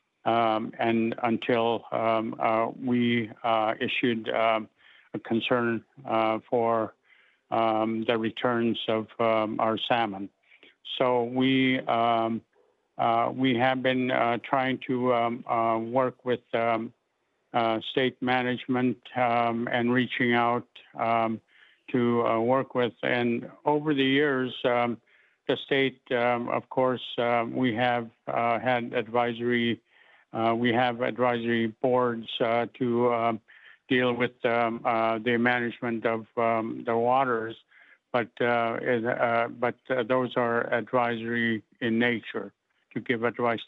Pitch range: 115-125 Hz